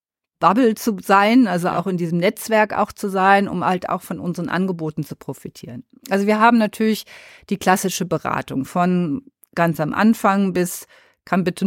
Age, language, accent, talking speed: 50-69, German, German, 170 wpm